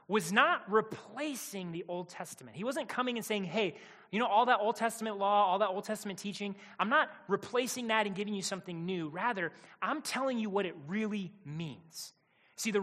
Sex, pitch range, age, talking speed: male, 165-215 Hz, 30-49, 200 wpm